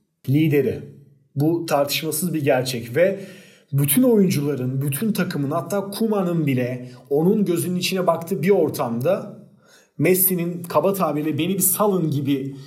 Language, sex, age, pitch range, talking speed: Turkish, male, 40-59, 140-175 Hz, 125 wpm